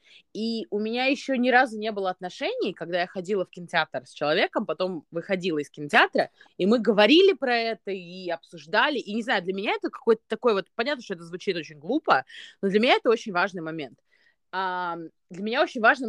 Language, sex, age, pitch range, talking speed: Russian, female, 20-39, 160-225 Hz, 200 wpm